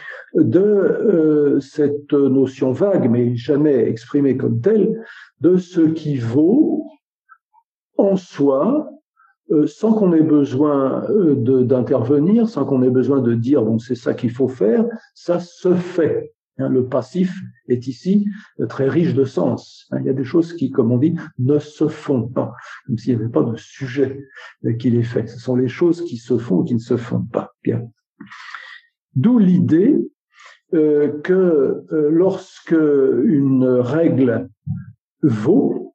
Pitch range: 135-210 Hz